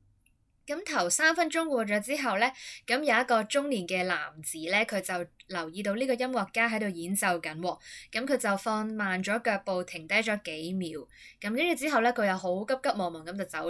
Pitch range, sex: 180-245 Hz, female